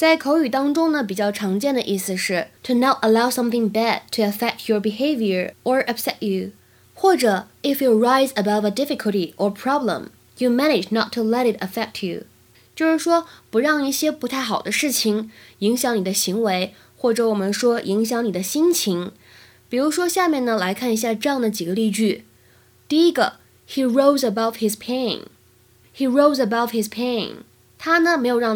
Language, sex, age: Chinese, female, 10-29